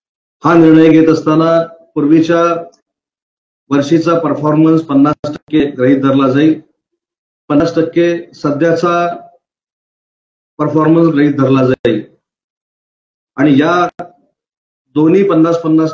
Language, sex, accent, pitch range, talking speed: Marathi, male, native, 140-165 Hz, 50 wpm